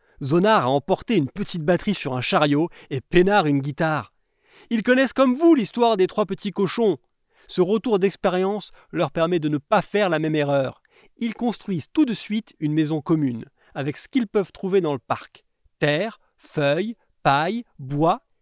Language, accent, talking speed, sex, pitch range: French, French, 175 wpm, male, 160-255 Hz